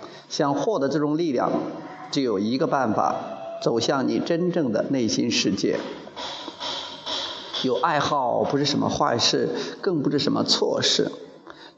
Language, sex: Chinese, male